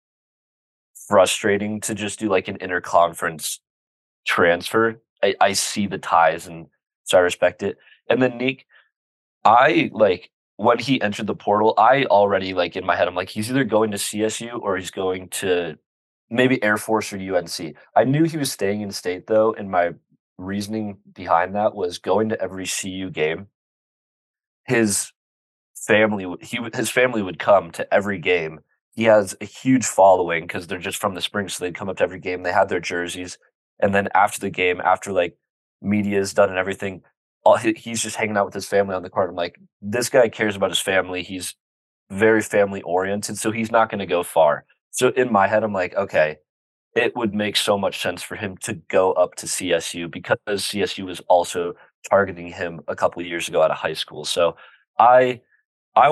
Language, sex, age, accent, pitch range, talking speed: English, male, 20-39, American, 90-110 Hz, 190 wpm